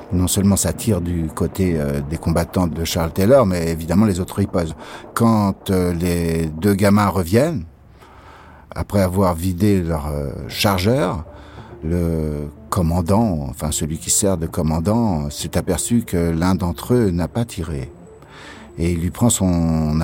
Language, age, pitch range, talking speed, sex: French, 60-79, 85-110 Hz, 145 wpm, male